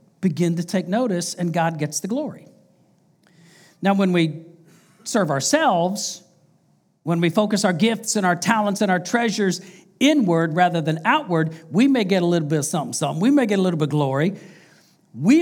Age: 50-69